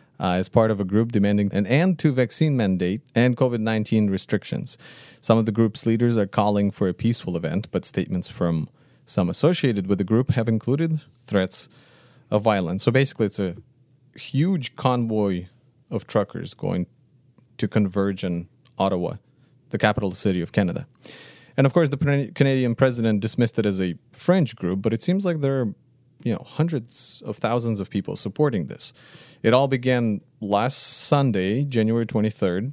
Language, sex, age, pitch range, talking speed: English, male, 30-49, 105-135 Hz, 165 wpm